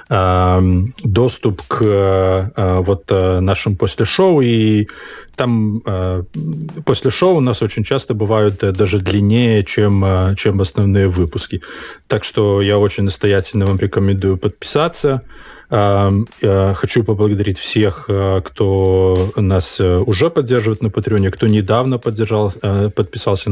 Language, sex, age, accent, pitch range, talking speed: Russian, male, 20-39, native, 95-110 Hz, 105 wpm